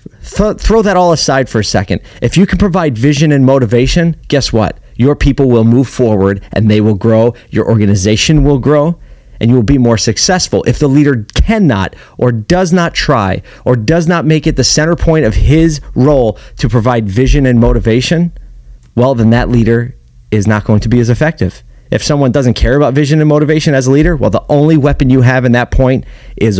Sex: male